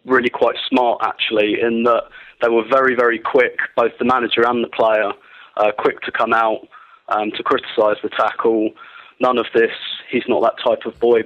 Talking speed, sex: 190 wpm, male